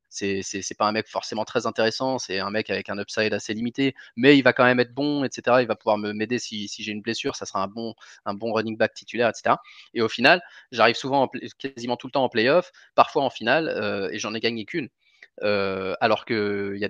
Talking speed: 250 wpm